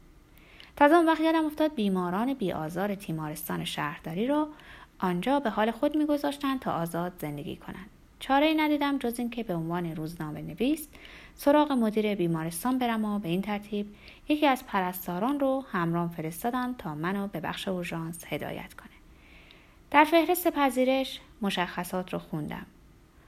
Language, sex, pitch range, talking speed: Persian, female, 170-255 Hz, 145 wpm